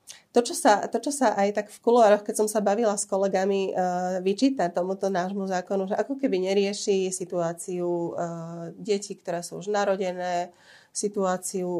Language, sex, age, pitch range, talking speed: Slovak, female, 30-49, 185-210 Hz, 170 wpm